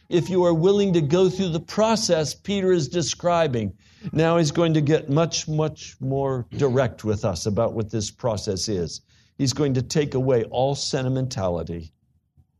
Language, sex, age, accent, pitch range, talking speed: English, male, 60-79, American, 110-160 Hz, 165 wpm